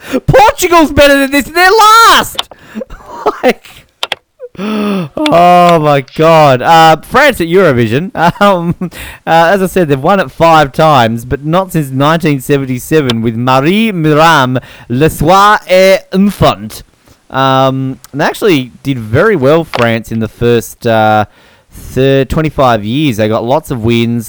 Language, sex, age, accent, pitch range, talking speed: English, male, 20-39, Australian, 115-160 Hz, 130 wpm